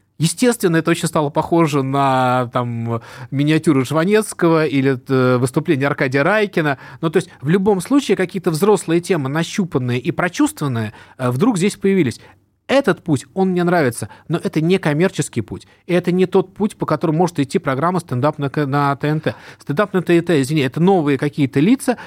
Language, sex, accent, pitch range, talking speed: Russian, male, native, 140-195 Hz, 150 wpm